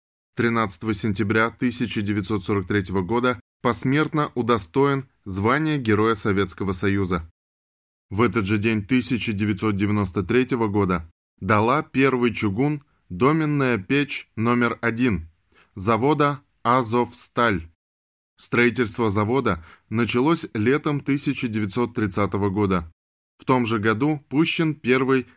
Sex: male